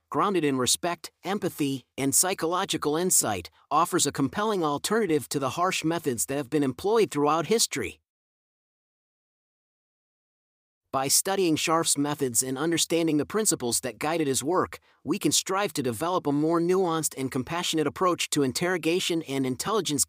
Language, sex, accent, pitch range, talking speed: English, male, American, 140-180 Hz, 145 wpm